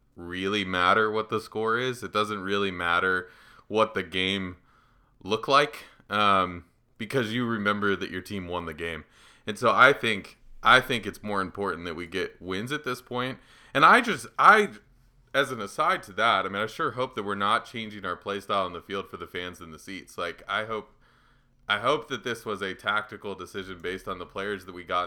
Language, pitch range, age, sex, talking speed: English, 90-110 Hz, 20-39, male, 215 wpm